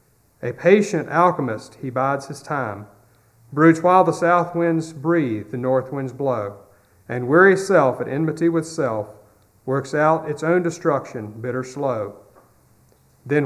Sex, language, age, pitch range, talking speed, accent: male, English, 40-59, 115-165 Hz, 145 wpm, American